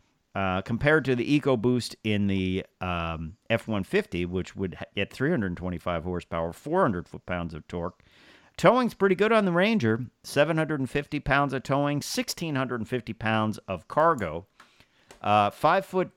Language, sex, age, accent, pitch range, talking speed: English, male, 50-69, American, 95-135 Hz, 125 wpm